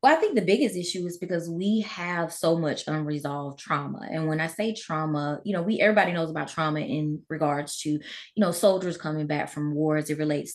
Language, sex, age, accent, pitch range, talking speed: English, female, 20-39, American, 155-175 Hz, 215 wpm